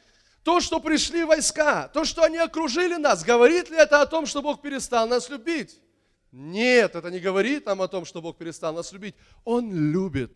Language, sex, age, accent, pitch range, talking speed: Russian, male, 20-39, native, 220-310 Hz, 190 wpm